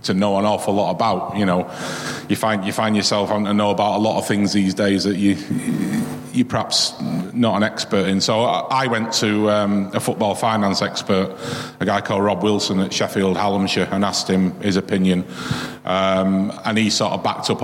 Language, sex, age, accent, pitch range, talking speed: English, male, 30-49, British, 100-110 Hz, 205 wpm